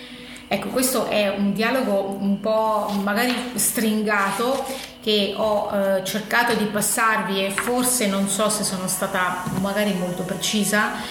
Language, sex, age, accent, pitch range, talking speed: Italian, female, 30-49, native, 195-220 Hz, 135 wpm